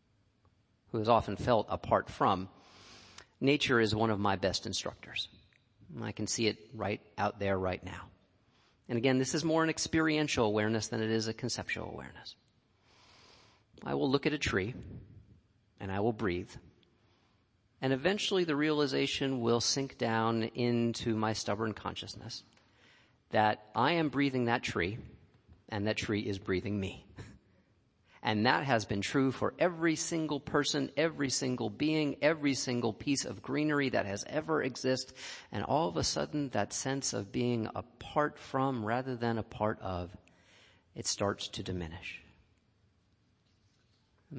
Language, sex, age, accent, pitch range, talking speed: English, male, 40-59, American, 100-125 Hz, 150 wpm